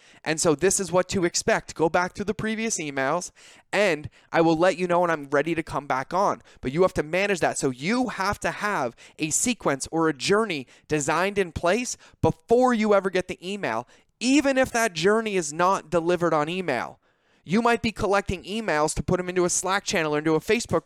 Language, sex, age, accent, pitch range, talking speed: English, male, 20-39, American, 145-185 Hz, 220 wpm